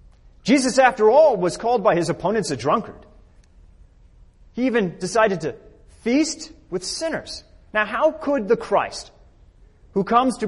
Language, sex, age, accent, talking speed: English, male, 30-49, American, 145 wpm